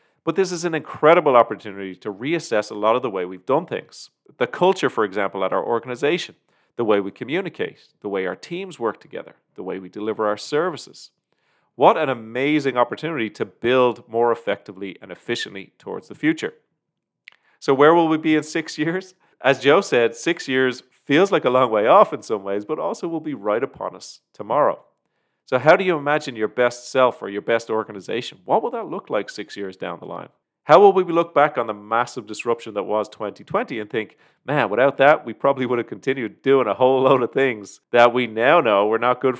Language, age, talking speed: English, 30-49, 210 wpm